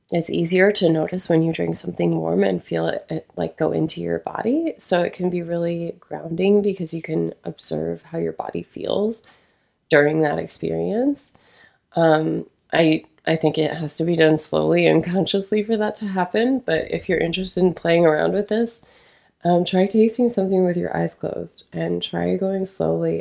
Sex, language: female, English